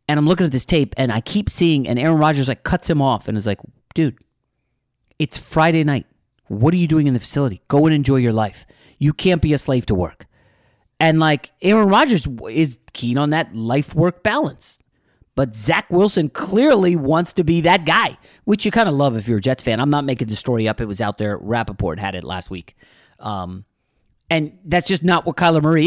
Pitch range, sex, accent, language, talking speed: 125-170 Hz, male, American, English, 220 wpm